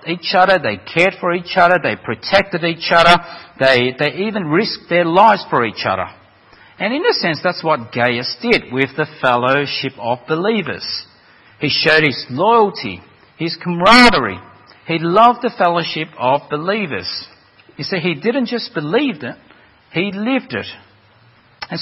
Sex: male